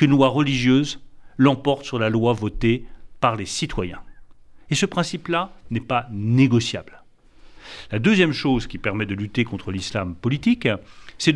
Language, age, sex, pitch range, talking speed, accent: French, 40-59, male, 110-140 Hz, 150 wpm, French